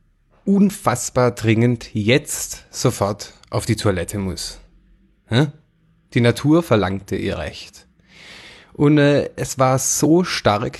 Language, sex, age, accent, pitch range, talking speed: German, male, 30-49, German, 105-140 Hz, 100 wpm